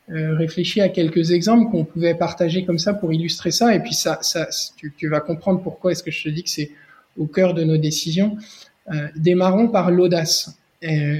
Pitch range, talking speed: 155-190 Hz, 210 wpm